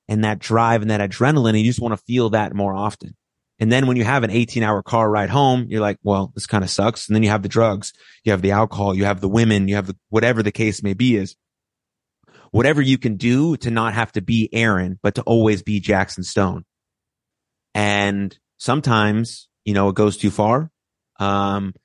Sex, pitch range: male, 100-115 Hz